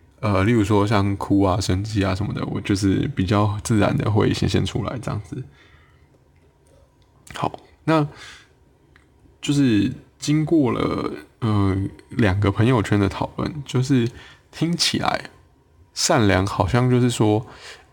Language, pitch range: Chinese, 100-125 Hz